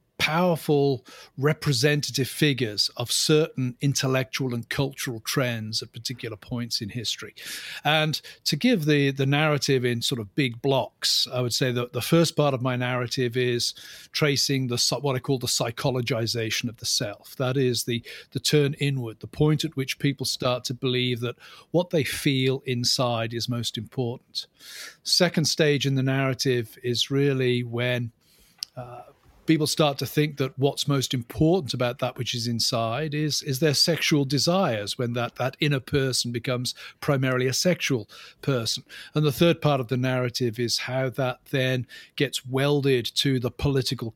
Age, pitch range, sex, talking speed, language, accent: 40-59, 120-145 Hz, male, 165 wpm, English, British